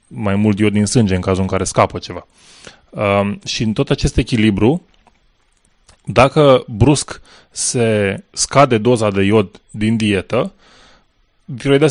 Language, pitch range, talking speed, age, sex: Romanian, 100-130 Hz, 130 wpm, 20-39, male